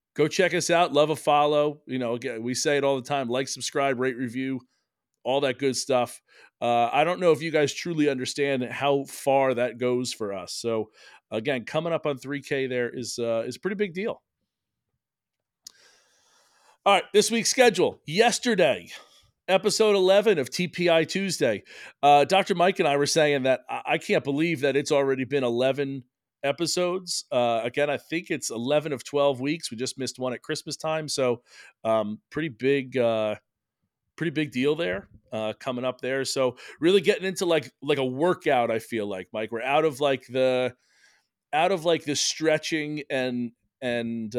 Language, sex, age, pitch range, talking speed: English, male, 40-59, 125-155 Hz, 180 wpm